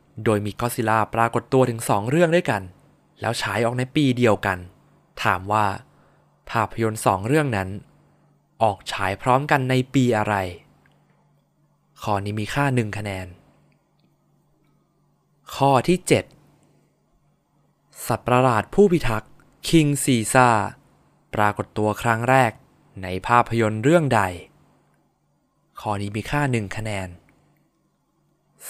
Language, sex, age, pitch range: Thai, male, 20-39, 105-140 Hz